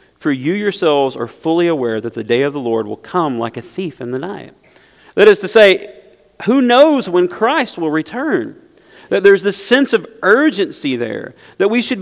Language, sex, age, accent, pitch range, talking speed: English, male, 40-59, American, 135-205 Hz, 200 wpm